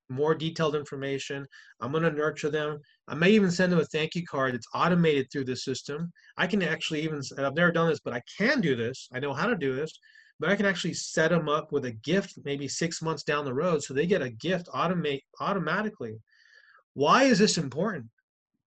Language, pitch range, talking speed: English, 145-195 Hz, 210 wpm